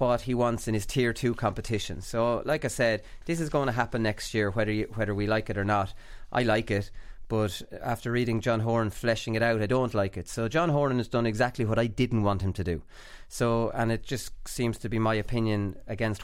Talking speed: 240 wpm